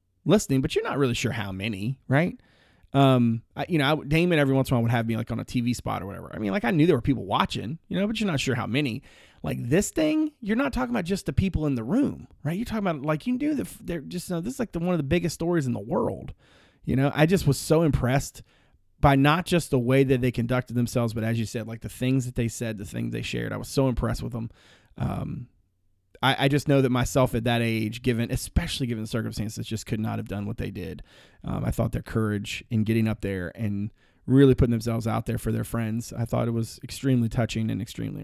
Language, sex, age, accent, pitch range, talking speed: English, male, 30-49, American, 110-150 Hz, 265 wpm